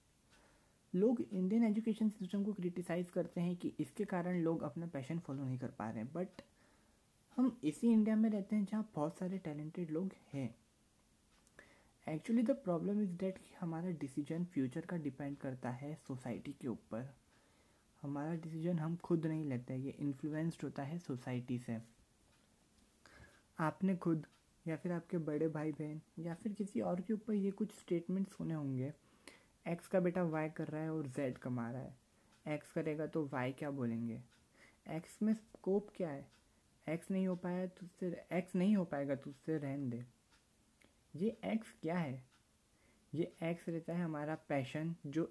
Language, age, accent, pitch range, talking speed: Hindi, 20-39, native, 140-180 Hz, 170 wpm